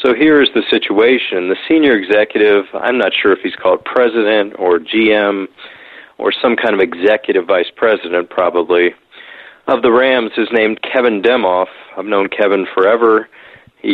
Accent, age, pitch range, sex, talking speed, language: American, 40-59, 95-125 Hz, male, 160 wpm, English